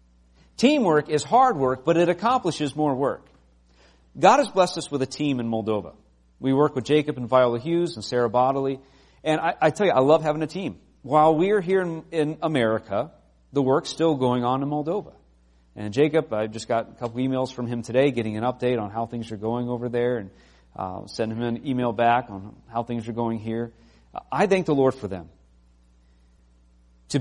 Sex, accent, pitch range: male, American, 95-145 Hz